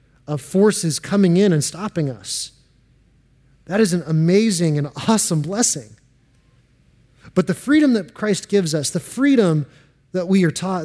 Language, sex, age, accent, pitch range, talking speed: English, male, 30-49, American, 140-200 Hz, 150 wpm